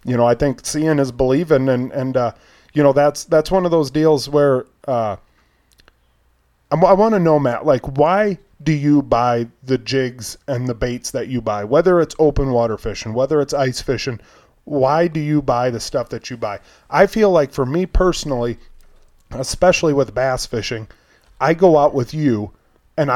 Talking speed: 185 wpm